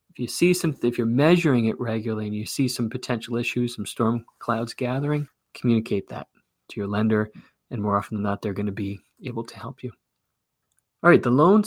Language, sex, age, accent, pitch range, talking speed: English, male, 30-49, American, 105-125 Hz, 210 wpm